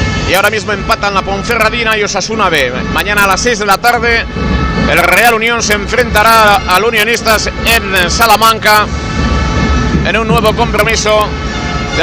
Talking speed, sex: 150 wpm, male